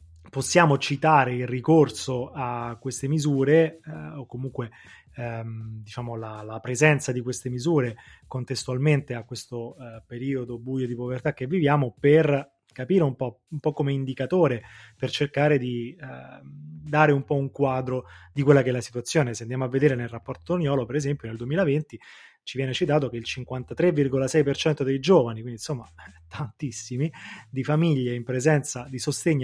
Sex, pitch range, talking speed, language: male, 120-150 Hz, 160 wpm, Italian